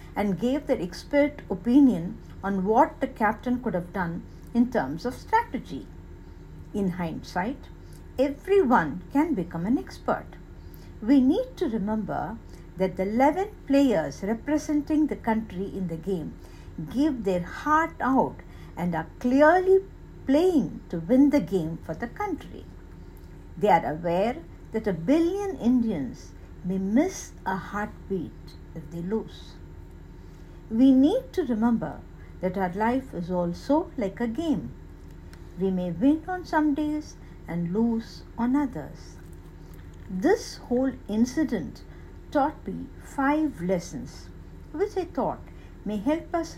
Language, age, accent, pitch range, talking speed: English, 60-79, Indian, 175-285 Hz, 130 wpm